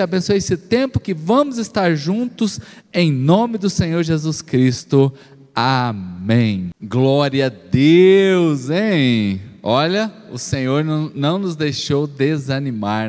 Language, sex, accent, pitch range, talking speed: Portuguese, male, Brazilian, 140-205 Hz, 120 wpm